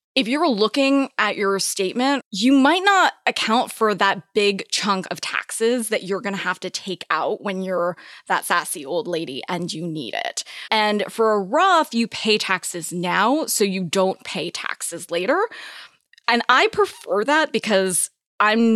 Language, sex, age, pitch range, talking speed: English, female, 20-39, 195-275 Hz, 175 wpm